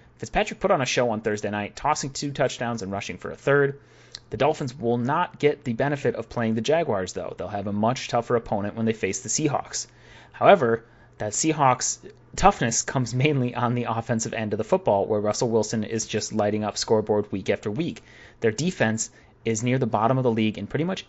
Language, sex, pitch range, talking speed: English, male, 110-135 Hz, 215 wpm